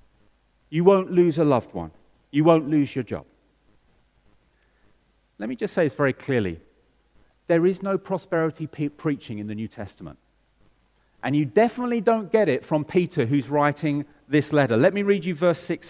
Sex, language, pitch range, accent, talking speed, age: male, English, 125-180 Hz, British, 170 wpm, 40-59